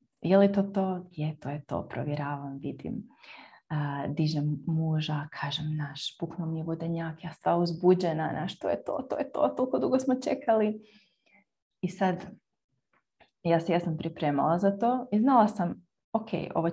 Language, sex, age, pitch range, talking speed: Croatian, female, 30-49, 165-215 Hz, 160 wpm